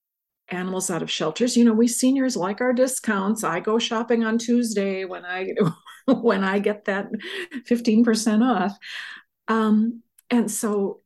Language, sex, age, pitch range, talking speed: English, female, 50-69, 180-225 Hz, 145 wpm